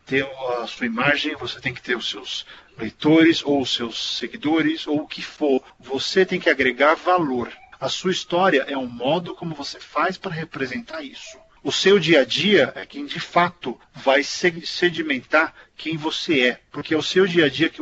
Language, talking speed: Portuguese, 195 wpm